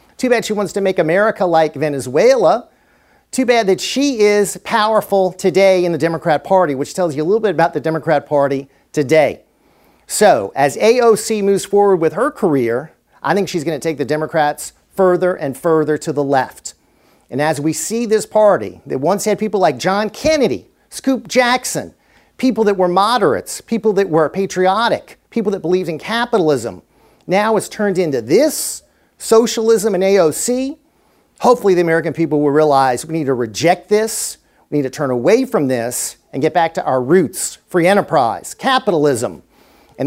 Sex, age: male, 50-69